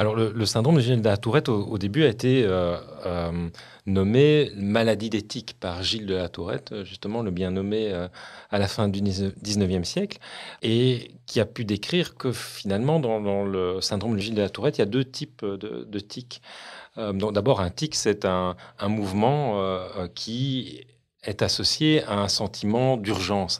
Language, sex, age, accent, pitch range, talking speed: French, male, 40-59, French, 100-125 Hz, 190 wpm